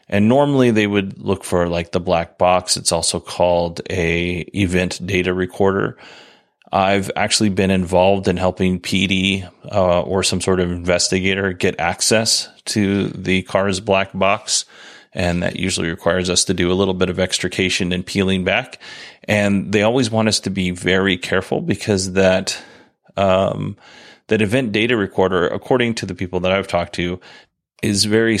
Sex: male